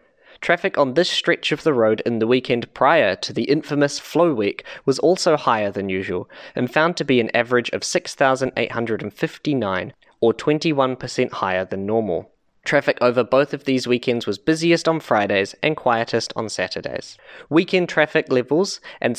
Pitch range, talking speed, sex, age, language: 115-150 Hz, 160 wpm, male, 10-29, English